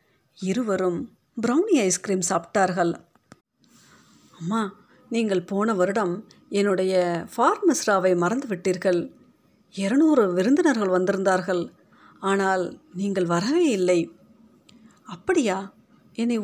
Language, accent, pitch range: Tamil, native, 185-230 Hz